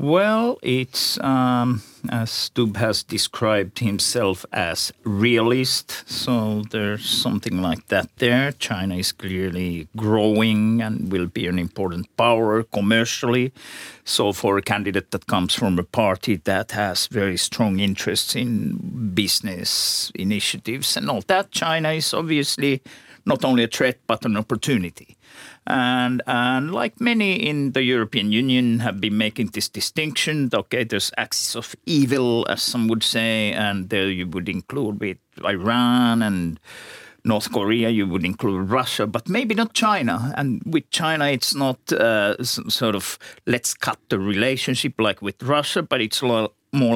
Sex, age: male, 50-69